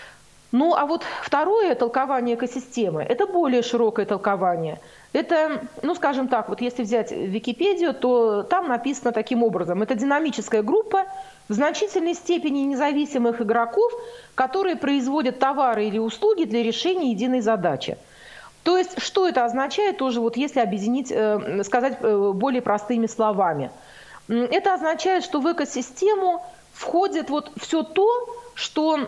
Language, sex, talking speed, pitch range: Russian, female, 130 wpm, 240-315 Hz